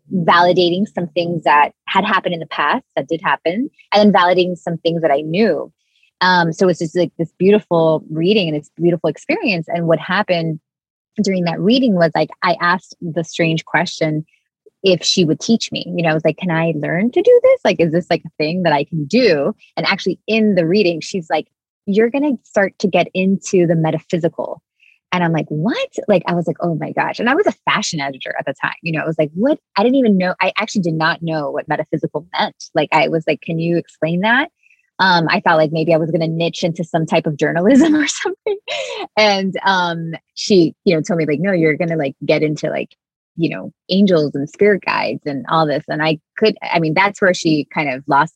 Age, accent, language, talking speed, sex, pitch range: 20-39, American, English, 230 wpm, female, 160-200 Hz